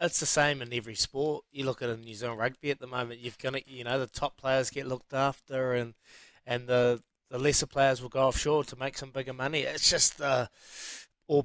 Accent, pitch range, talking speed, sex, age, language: Australian, 120-150 Hz, 235 wpm, male, 20-39, English